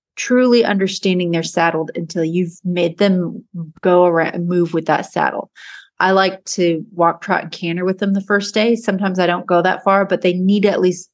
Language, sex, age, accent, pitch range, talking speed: English, female, 30-49, American, 180-225 Hz, 210 wpm